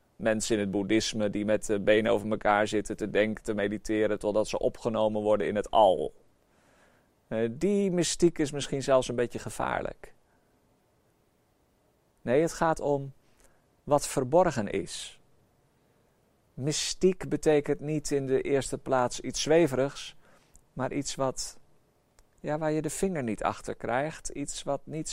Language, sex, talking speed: Dutch, male, 140 wpm